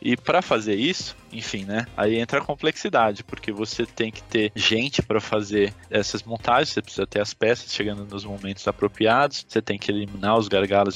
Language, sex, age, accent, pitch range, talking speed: Portuguese, male, 20-39, Brazilian, 100-115 Hz, 190 wpm